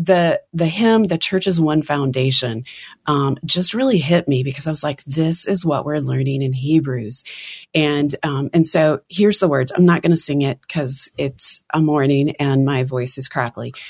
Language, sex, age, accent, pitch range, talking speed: English, female, 30-49, American, 135-175 Hz, 195 wpm